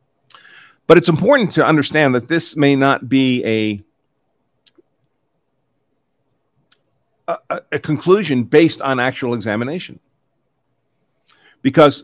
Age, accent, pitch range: 40-59, American, 115-140 Hz